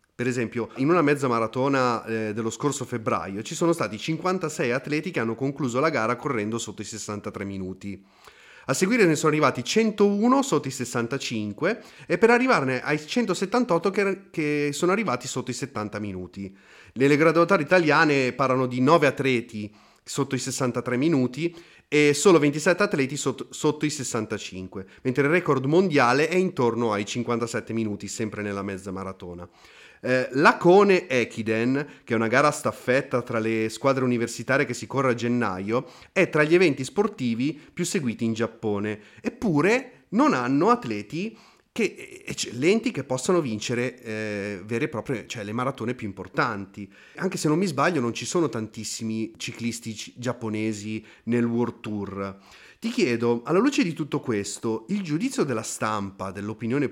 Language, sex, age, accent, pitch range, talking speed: Italian, male, 30-49, native, 110-150 Hz, 160 wpm